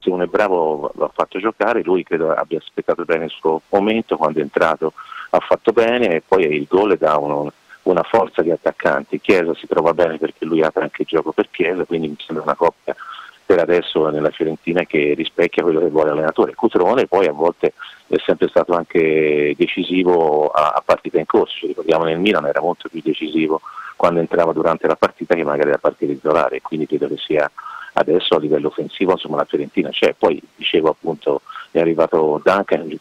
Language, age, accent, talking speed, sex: Italian, 40-59, native, 205 wpm, male